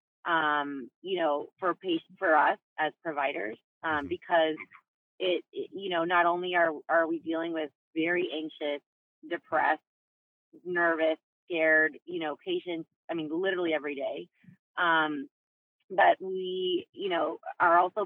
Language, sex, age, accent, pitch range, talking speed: English, female, 30-49, American, 155-205 Hz, 140 wpm